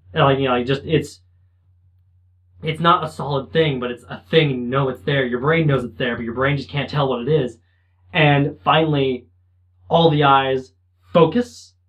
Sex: male